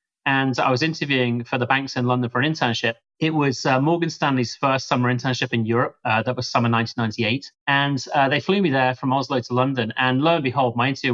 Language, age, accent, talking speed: English, 30-49, British, 230 wpm